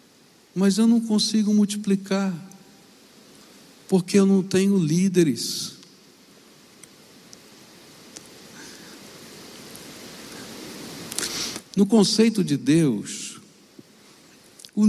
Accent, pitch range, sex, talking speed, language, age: Brazilian, 165-225 Hz, male, 60 wpm, Portuguese, 60-79